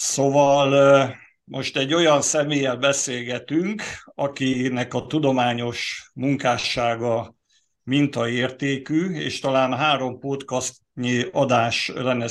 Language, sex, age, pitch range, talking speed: Hungarian, male, 50-69, 115-140 Hz, 85 wpm